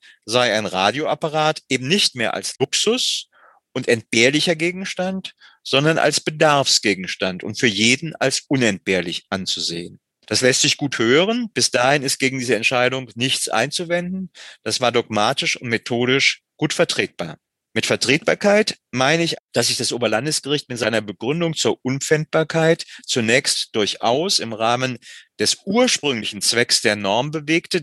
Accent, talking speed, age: German, 135 wpm, 40-59